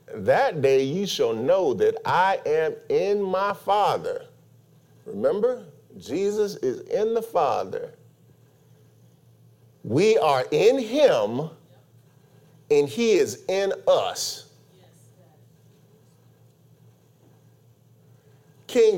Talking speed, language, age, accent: 85 wpm, English, 40-59, American